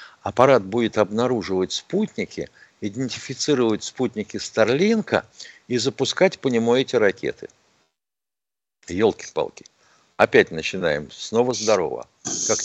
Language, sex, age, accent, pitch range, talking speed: Russian, male, 60-79, native, 105-140 Hz, 95 wpm